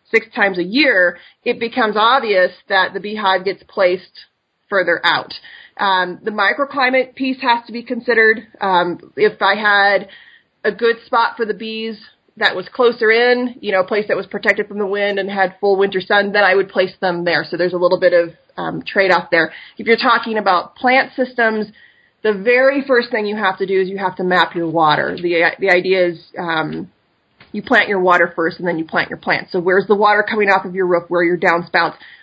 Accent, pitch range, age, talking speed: American, 180-230 Hz, 30-49, 220 wpm